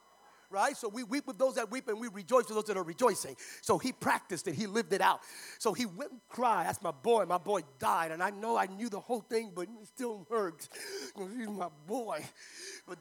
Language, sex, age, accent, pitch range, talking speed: English, male, 40-59, American, 215-330 Hz, 235 wpm